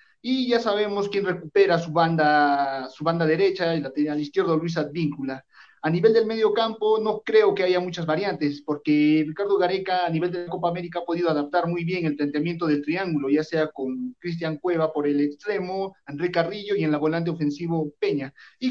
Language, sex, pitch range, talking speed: Spanish, male, 150-195 Hz, 195 wpm